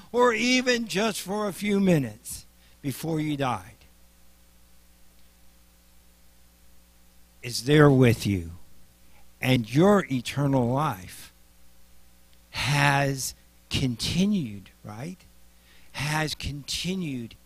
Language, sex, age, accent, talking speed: English, male, 60-79, American, 80 wpm